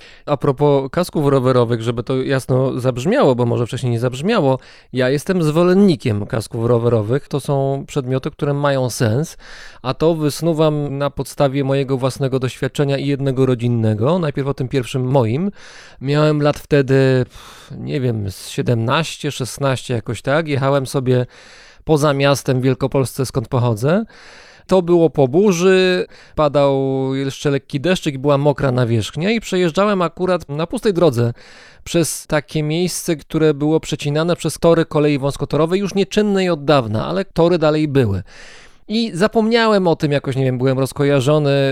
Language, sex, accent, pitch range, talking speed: Polish, male, native, 135-160 Hz, 145 wpm